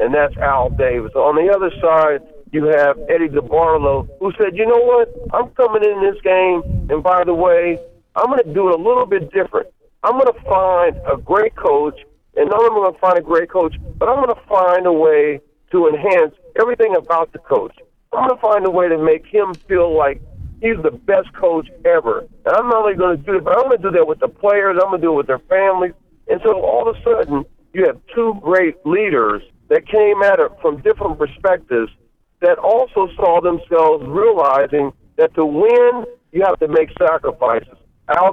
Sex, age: male, 50-69